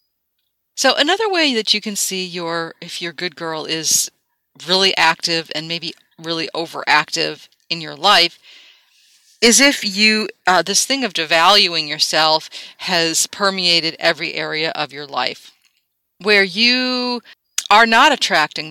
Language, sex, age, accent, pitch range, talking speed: English, female, 40-59, American, 165-210 Hz, 140 wpm